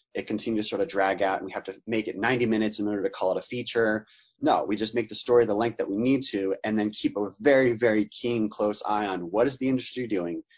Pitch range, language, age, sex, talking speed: 100-130 Hz, English, 30-49, male, 280 wpm